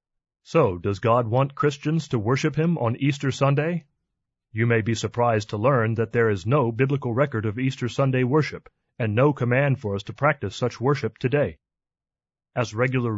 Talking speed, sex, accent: 180 wpm, male, American